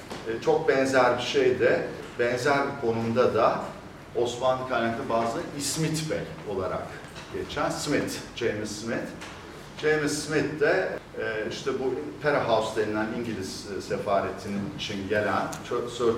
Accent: native